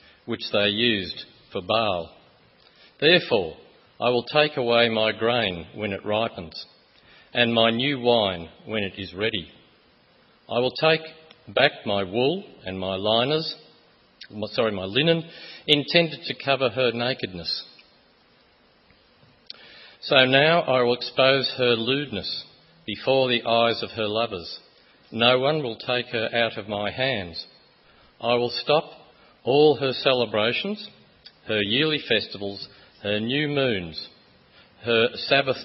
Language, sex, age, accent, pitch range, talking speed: English, male, 50-69, Australian, 110-135 Hz, 130 wpm